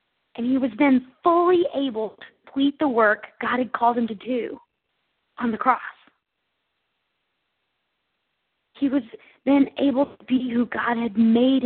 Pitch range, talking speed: 230-290 Hz, 150 wpm